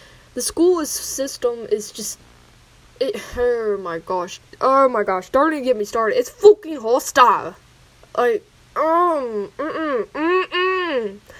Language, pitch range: English, 210-315 Hz